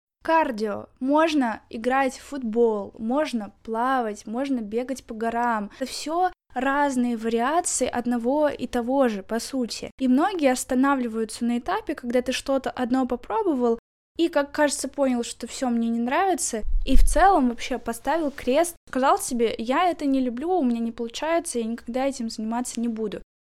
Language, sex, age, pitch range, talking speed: Russian, female, 10-29, 235-285 Hz, 160 wpm